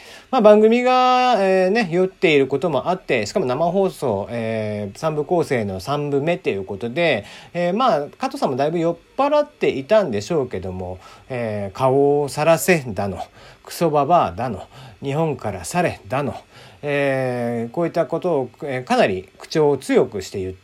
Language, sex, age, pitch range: Japanese, male, 40-59, 120-205 Hz